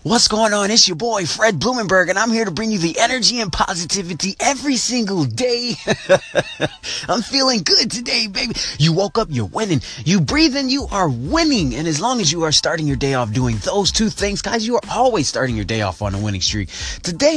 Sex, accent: male, American